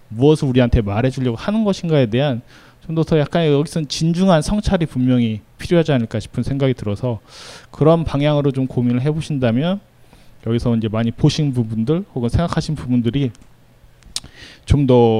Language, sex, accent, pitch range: Korean, male, native, 125-170 Hz